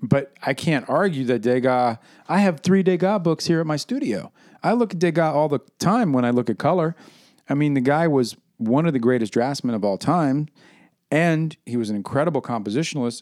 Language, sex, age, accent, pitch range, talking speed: English, male, 40-59, American, 115-155 Hz, 210 wpm